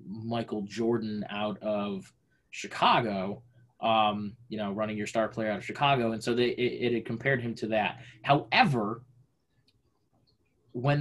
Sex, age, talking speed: male, 20-39, 145 wpm